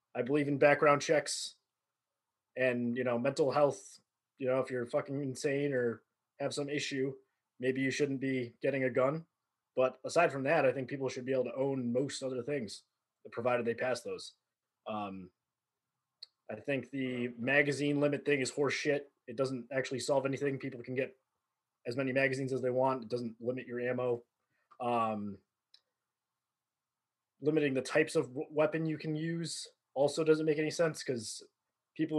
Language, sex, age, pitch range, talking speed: English, male, 20-39, 125-145 Hz, 170 wpm